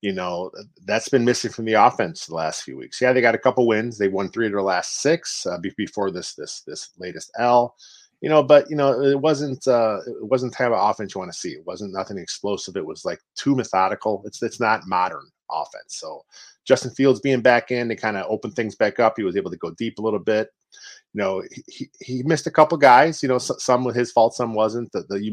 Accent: American